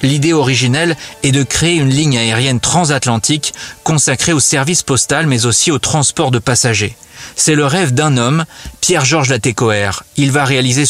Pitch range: 120-150 Hz